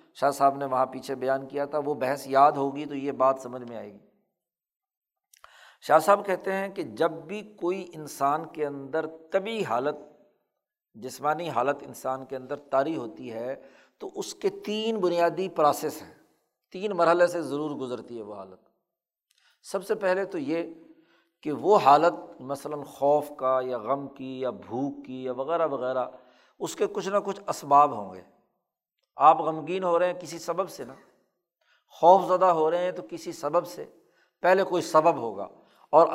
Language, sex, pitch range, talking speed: Urdu, male, 140-180 Hz, 175 wpm